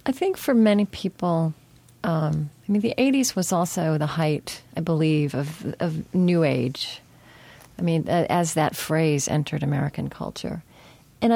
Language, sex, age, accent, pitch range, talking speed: English, female, 40-59, American, 155-200 Hz, 155 wpm